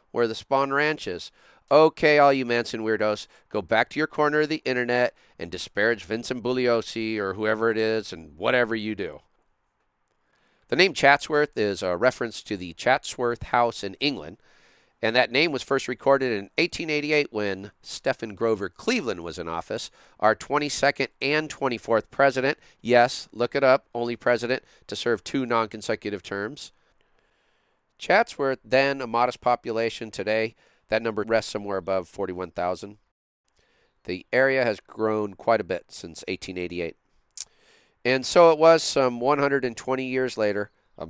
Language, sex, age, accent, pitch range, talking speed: English, male, 40-59, American, 105-135 Hz, 150 wpm